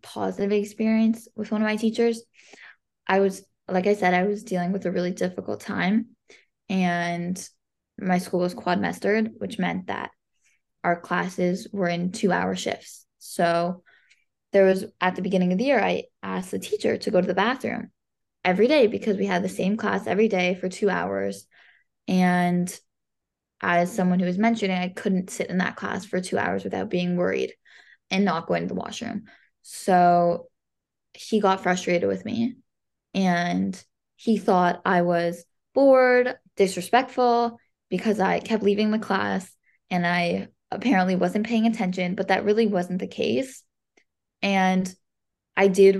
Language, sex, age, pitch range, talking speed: English, female, 20-39, 180-220 Hz, 165 wpm